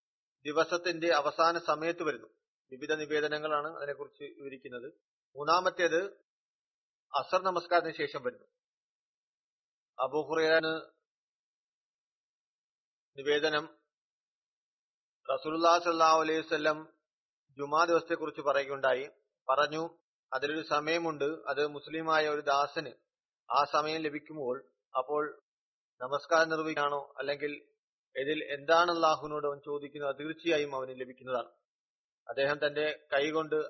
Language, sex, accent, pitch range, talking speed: Malayalam, male, native, 145-160 Hz, 85 wpm